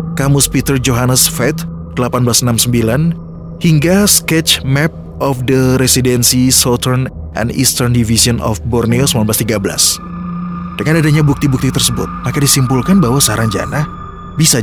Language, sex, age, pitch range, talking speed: Indonesian, male, 30-49, 115-145 Hz, 110 wpm